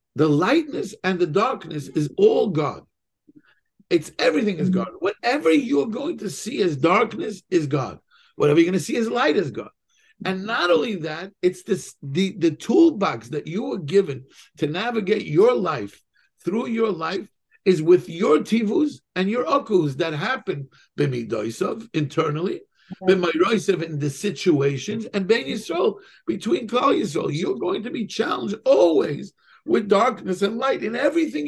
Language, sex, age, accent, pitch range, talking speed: English, male, 50-69, American, 165-235 Hz, 155 wpm